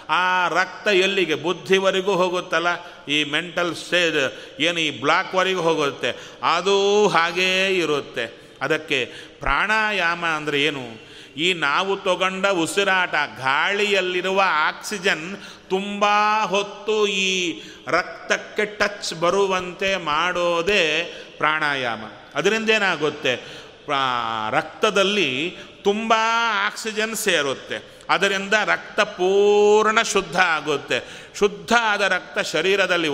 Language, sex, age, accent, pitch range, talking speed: Kannada, male, 40-59, native, 150-200 Hz, 90 wpm